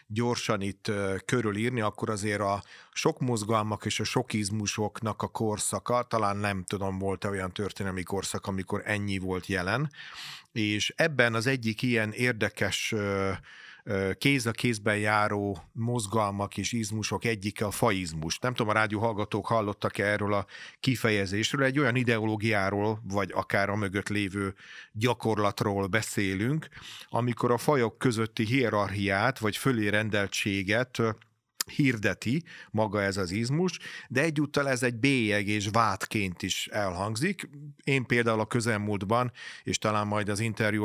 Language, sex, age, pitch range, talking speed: Hungarian, male, 40-59, 100-115 Hz, 130 wpm